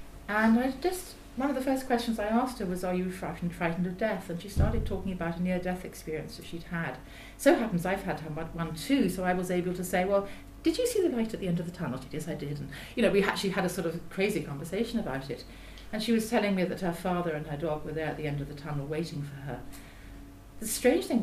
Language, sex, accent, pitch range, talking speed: English, female, British, 155-220 Hz, 280 wpm